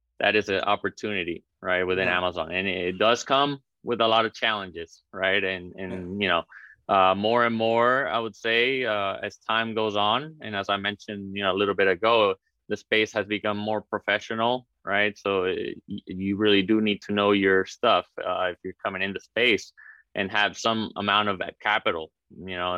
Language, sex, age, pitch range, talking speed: English, male, 20-39, 95-110 Hz, 195 wpm